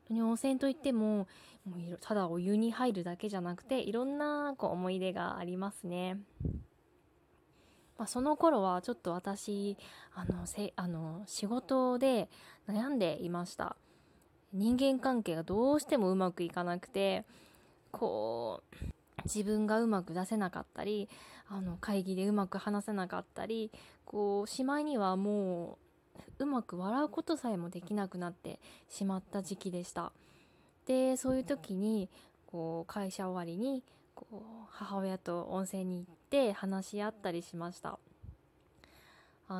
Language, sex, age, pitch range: Japanese, female, 20-39, 185-230 Hz